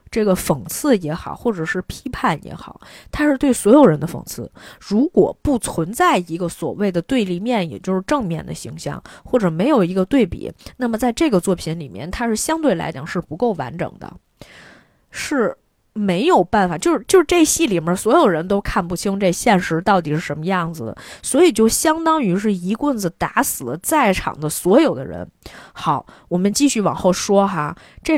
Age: 20-39